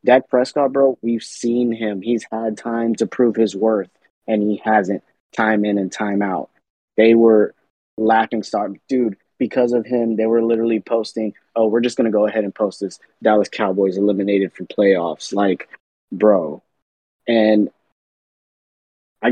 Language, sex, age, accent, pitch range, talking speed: English, male, 20-39, American, 100-115 Hz, 160 wpm